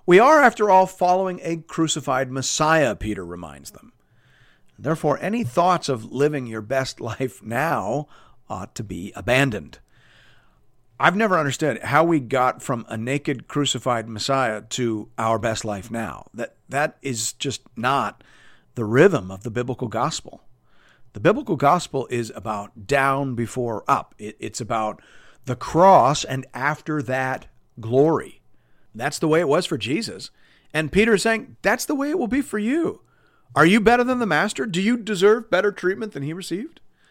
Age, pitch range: 50-69, 125-195 Hz